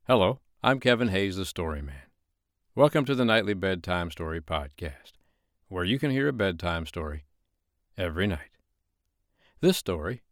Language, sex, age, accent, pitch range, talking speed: English, male, 60-79, American, 85-115 Hz, 145 wpm